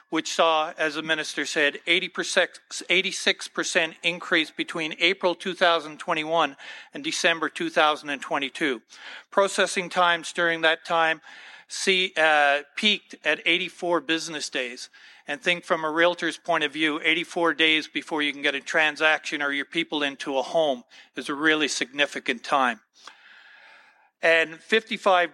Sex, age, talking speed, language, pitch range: male, 50-69, 130 wpm, English, 155-175 Hz